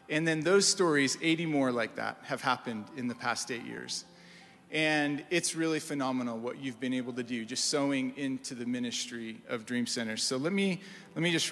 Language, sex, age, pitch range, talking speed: English, male, 40-59, 125-155 Hz, 200 wpm